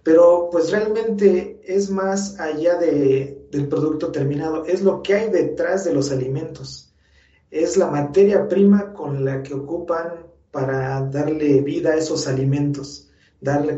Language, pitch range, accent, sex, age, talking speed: Spanish, 135-165 Hz, Mexican, male, 40-59, 145 wpm